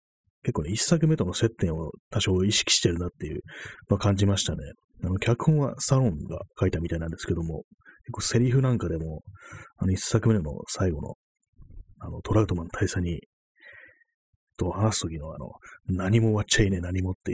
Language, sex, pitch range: Japanese, male, 85-110 Hz